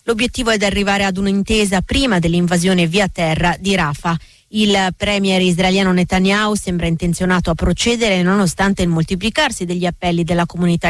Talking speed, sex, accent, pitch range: 150 wpm, female, native, 180-210 Hz